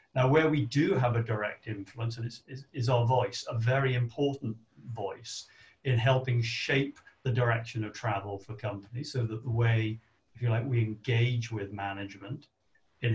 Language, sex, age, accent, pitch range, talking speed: English, male, 50-69, British, 110-135 Hz, 180 wpm